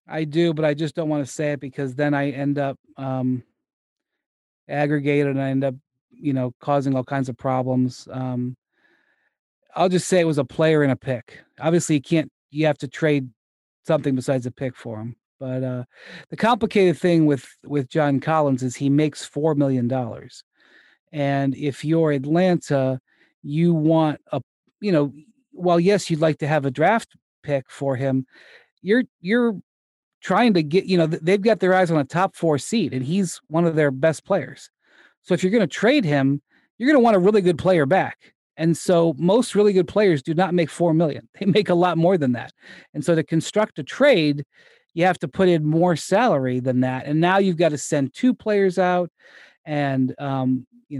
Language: English